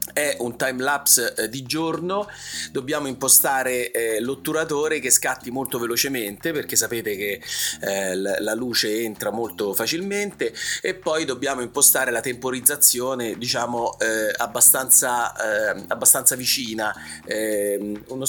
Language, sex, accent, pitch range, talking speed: Italian, male, native, 115-160 Hz, 105 wpm